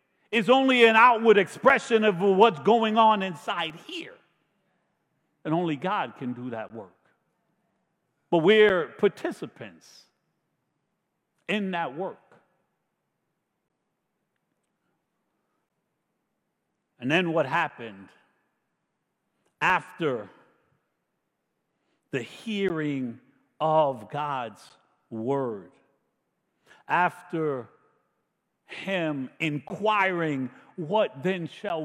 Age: 50-69